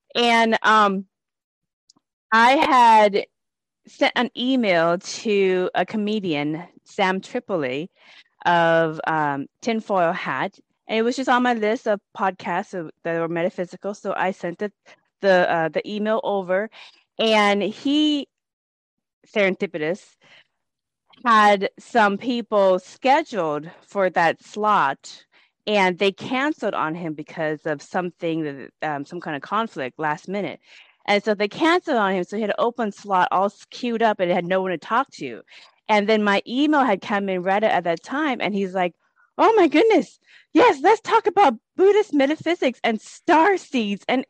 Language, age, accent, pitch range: English, 20-39, American, 180-245 Hz